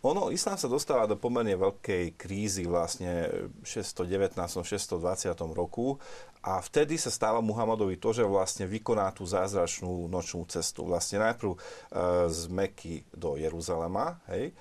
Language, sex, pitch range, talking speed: Slovak, male, 95-135 Hz, 130 wpm